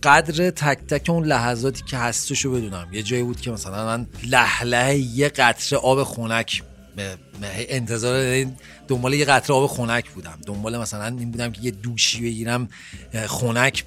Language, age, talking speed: Persian, 40-59, 160 wpm